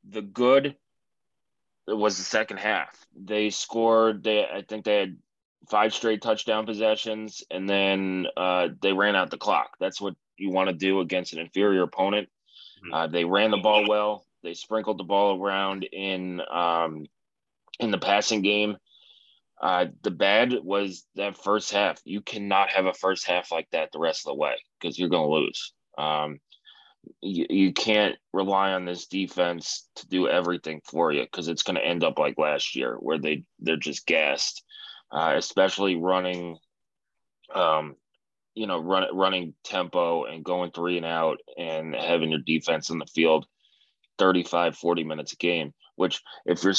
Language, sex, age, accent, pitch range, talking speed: English, male, 20-39, American, 85-100 Hz, 170 wpm